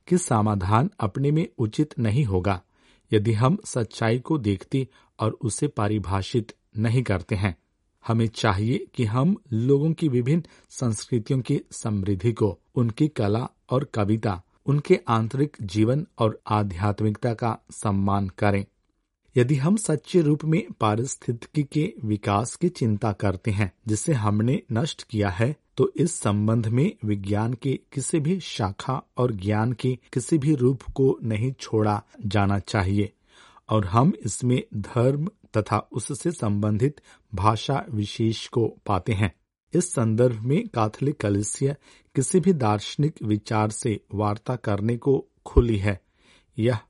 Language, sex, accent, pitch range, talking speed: Hindi, male, native, 105-135 Hz, 135 wpm